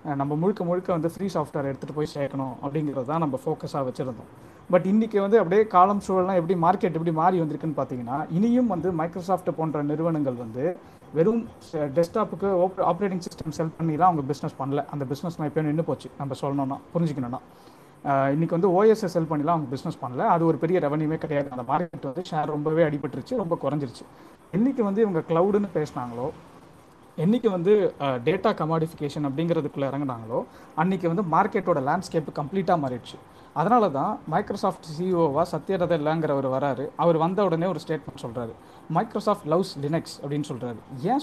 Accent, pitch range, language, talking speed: native, 145-185 Hz, Tamil, 155 wpm